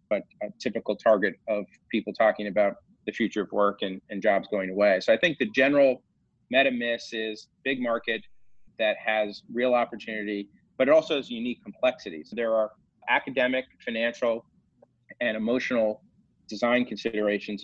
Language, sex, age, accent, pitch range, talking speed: English, male, 30-49, American, 105-120 Hz, 150 wpm